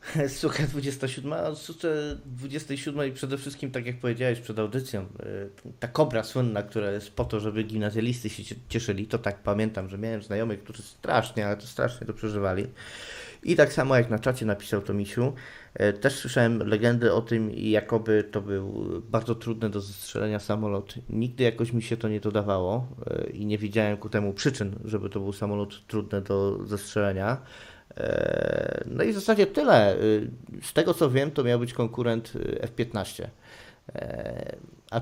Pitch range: 105-125 Hz